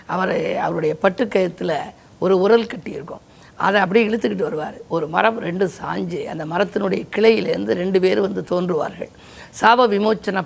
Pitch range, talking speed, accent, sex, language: 185-225 Hz, 130 wpm, native, female, Tamil